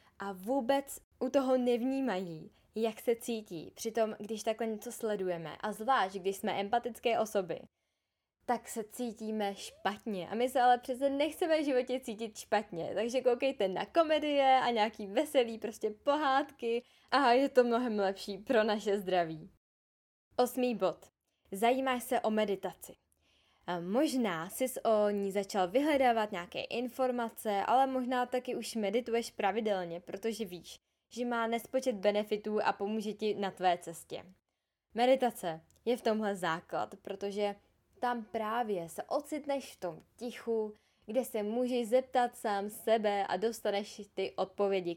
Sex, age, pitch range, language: female, 10-29, 200-245 Hz, Czech